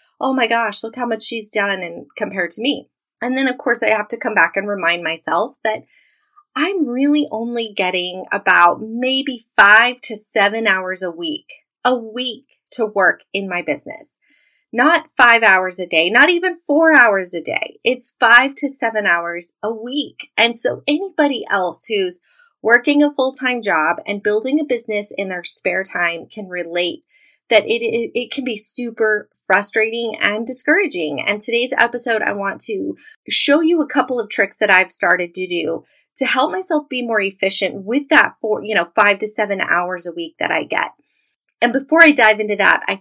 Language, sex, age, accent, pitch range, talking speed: English, female, 30-49, American, 200-275 Hz, 185 wpm